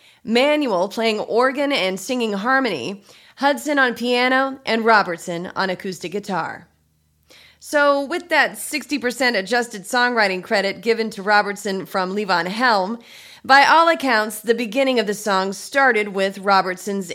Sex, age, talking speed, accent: female, 30-49, 135 wpm, American